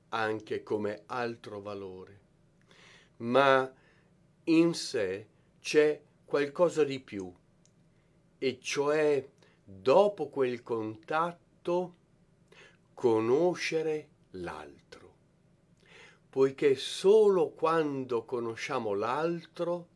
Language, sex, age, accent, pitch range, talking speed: Italian, male, 50-69, native, 120-175 Hz, 70 wpm